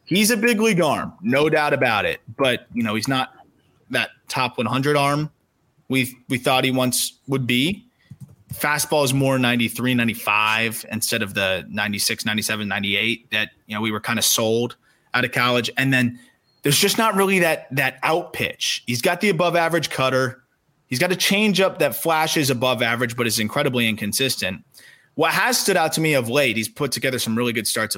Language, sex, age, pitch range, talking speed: English, male, 20-39, 115-145 Hz, 195 wpm